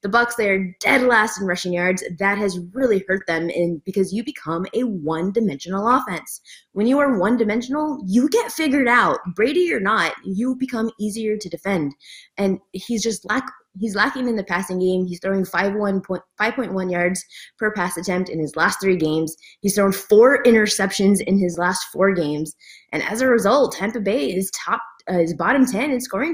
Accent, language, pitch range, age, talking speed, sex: American, English, 185-250 Hz, 20-39, 190 wpm, female